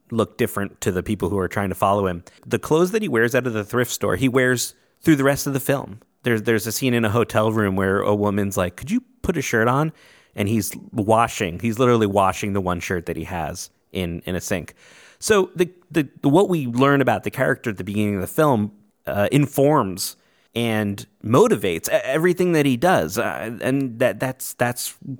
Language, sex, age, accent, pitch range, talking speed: English, male, 30-49, American, 100-140 Hz, 220 wpm